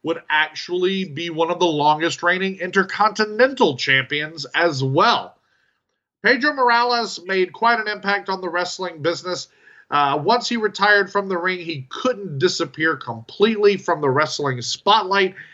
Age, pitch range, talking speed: 30-49, 150-190 Hz, 145 wpm